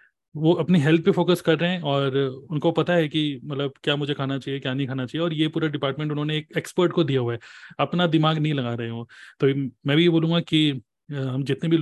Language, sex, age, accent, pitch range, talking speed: Hindi, male, 30-49, native, 140-180 Hz, 250 wpm